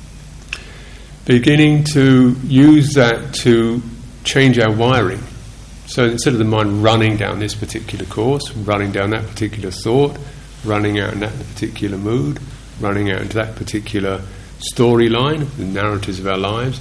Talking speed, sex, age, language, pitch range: 145 wpm, male, 50-69, English, 100-120 Hz